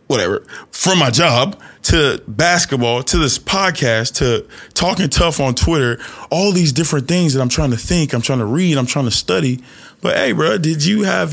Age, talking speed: 20-39, 195 wpm